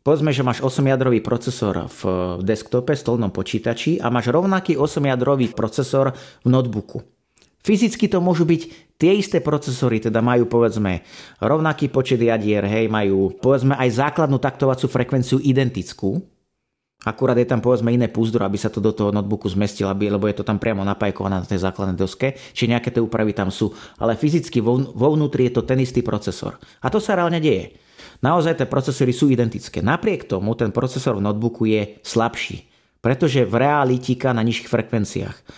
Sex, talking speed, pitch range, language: male, 170 wpm, 110-135 Hz, Slovak